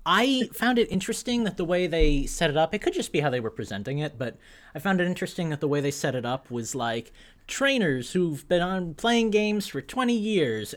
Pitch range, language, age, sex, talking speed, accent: 140-210 Hz, English, 30-49, male, 235 wpm, American